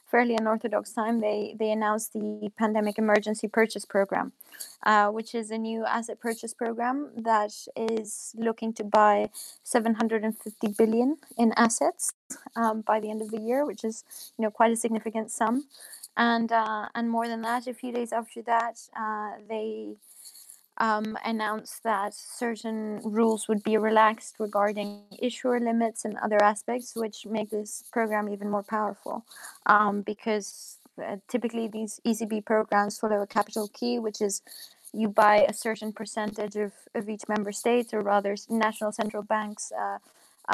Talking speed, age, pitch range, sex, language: 160 wpm, 20-39, 210-230 Hz, female, English